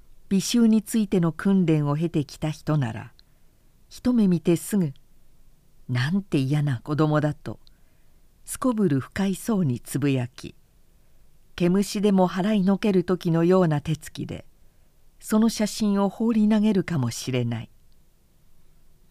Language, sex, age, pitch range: Japanese, female, 50-69, 150-210 Hz